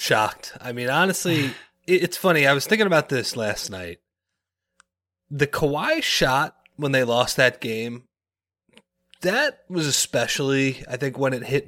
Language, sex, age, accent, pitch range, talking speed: English, male, 30-49, American, 95-150 Hz, 150 wpm